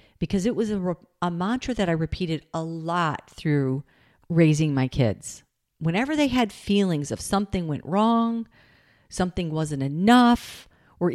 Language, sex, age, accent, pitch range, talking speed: English, female, 40-59, American, 150-205 Hz, 145 wpm